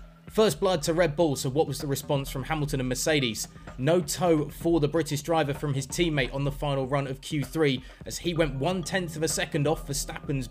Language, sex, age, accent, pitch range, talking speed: English, male, 20-39, British, 130-170 Hz, 215 wpm